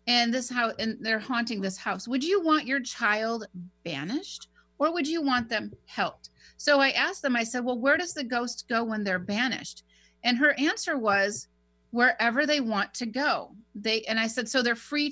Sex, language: female, English